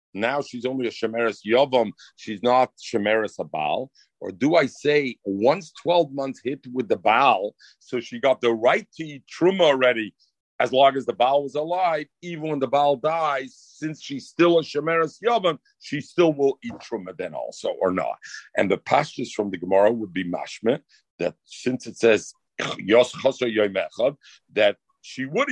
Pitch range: 120-170 Hz